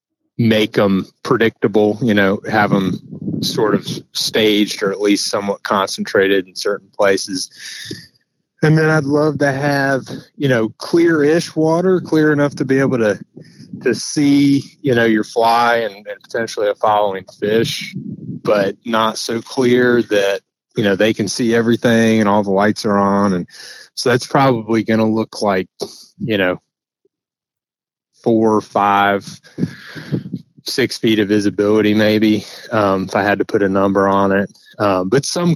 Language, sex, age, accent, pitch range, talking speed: English, male, 30-49, American, 100-125 Hz, 160 wpm